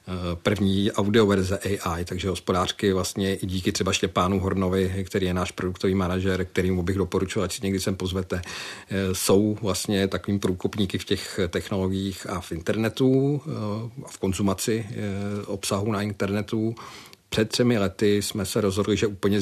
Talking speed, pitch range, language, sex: 150 wpm, 95-100 Hz, Czech, male